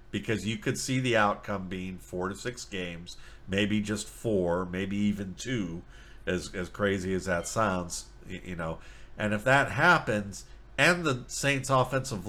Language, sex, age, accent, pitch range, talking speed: English, male, 50-69, American, 90-105 Hz, 160 wpm